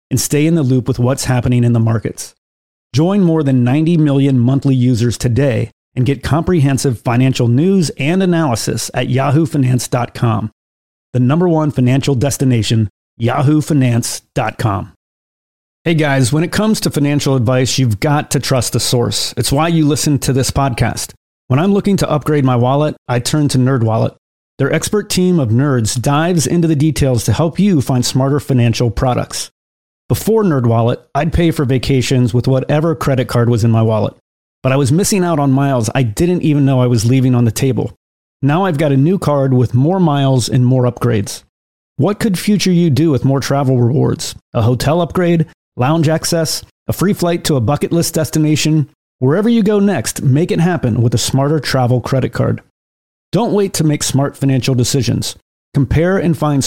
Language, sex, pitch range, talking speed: English, male, 125-155 Hz, 180 wpm